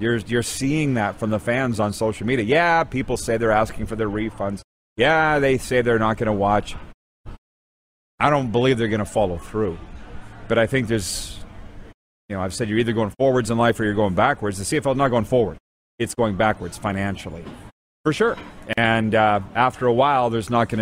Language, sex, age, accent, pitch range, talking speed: English, male, 40-59, American, 100-130 Hz, 210 wpm